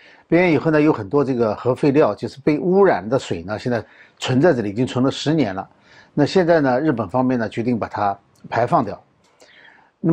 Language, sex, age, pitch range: Chinese, male, 50-69, 115-160 Hz